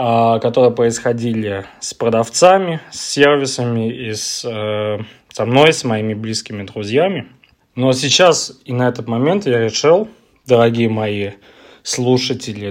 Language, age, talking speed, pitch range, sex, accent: Russian, 20-39, 125 wpm, 110-135 Hz, male, native